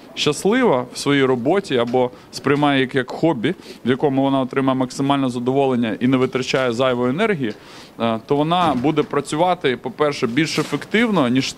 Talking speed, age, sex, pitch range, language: 140 wpm, 20-39, male, 120-150 Hz, Russian